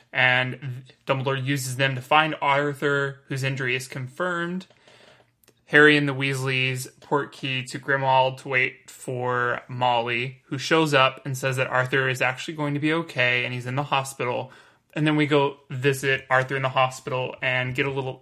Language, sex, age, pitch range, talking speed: English, male, 20-39, 130-145 Hz, 180 wpm